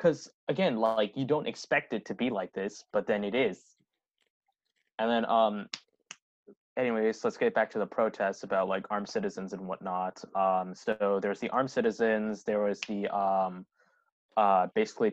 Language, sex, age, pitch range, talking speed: English, male, 20-39, 105-160 Hz, 170 wpm